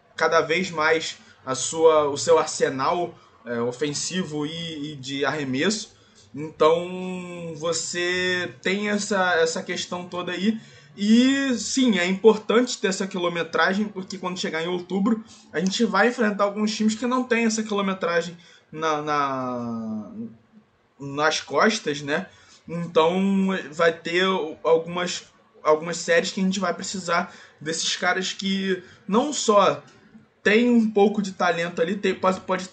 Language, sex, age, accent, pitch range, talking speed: Portuguese, male, 20-39, Brazilian, 155-200 Hz, 125 wpm